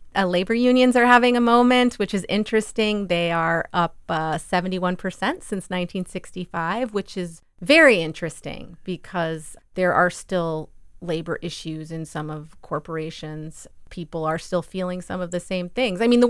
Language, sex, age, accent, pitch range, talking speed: English, female, 30-49, American, 160-215 Hz, 165 wpm